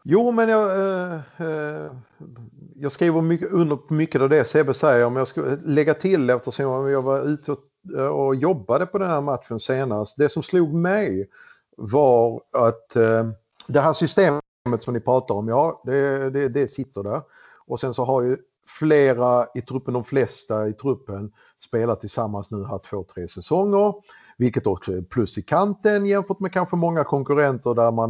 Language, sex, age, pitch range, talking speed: Swedish, male, 50-69, 115-155 Hz, 180 wpm